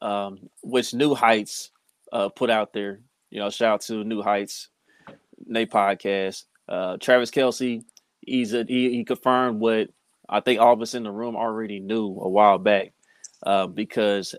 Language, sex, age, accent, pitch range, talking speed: English, male, 20-39, American, 105-130 Hz, 170 wpm